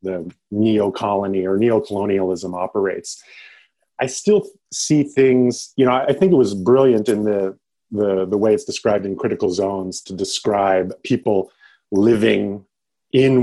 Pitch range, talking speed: 95-125 Hz, 140 wpm